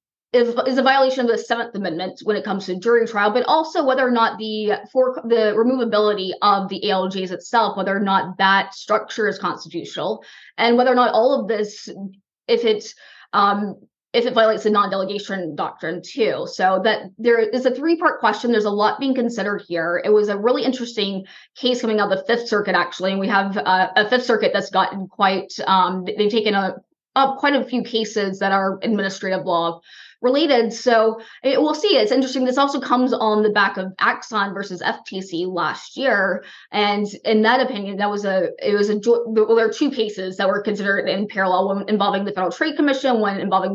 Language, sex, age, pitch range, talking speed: English, female, 20-39, 195-240 Hz, 200 wpm